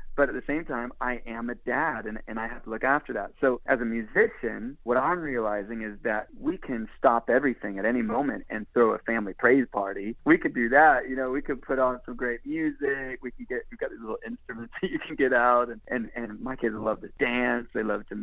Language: English